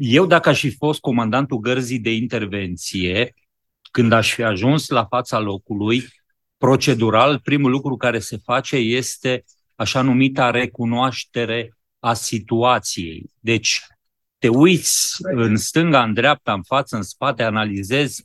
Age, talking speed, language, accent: 30-49, 130 wpm, Romanian, native